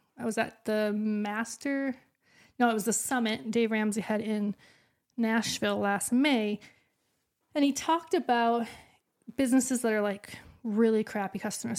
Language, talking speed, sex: English, 145 wpm, female